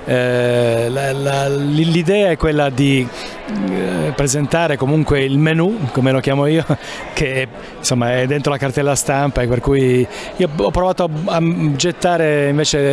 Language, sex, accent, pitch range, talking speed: Italian, male, native, 130-155 Hz, 130 wpm